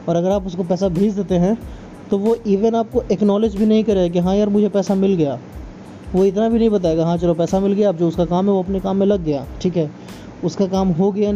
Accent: native